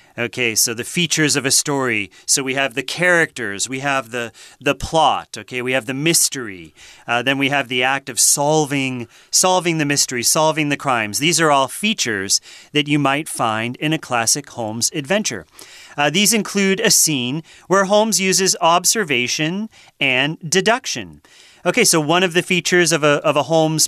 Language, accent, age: Chinese, American, 40-59